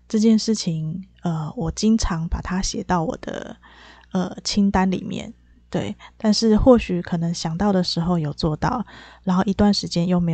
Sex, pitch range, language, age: female, 165-205 Hz, Chinese, 20-39